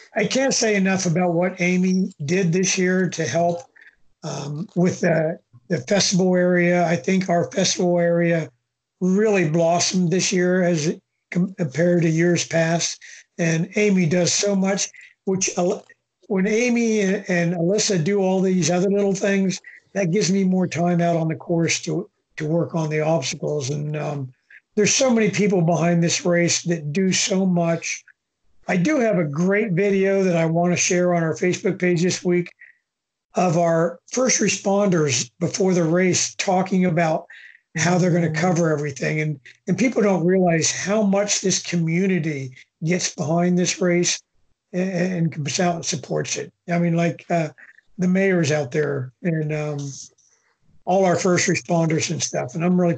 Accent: American